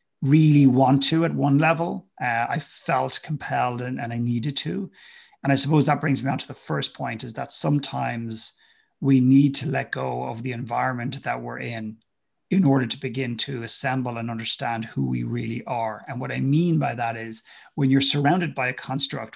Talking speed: 200 wpm